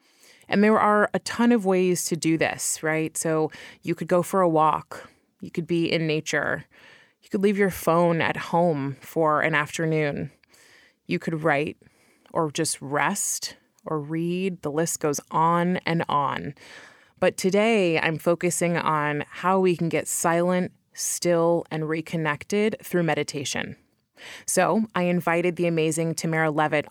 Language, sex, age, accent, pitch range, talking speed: English, female, 20-39, American, 155-180 Hz, 155 wpm